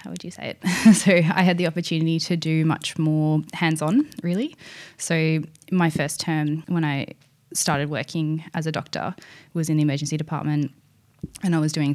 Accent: Australian